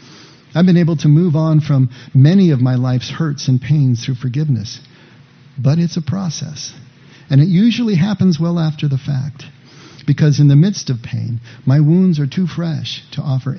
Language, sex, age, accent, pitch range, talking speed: English, male, 50-69, American, 130-155 Hz, 180 wpm